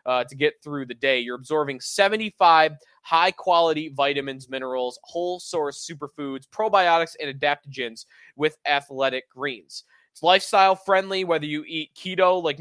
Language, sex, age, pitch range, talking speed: English, male, 20-39, 140-180 Hz, 145 wpm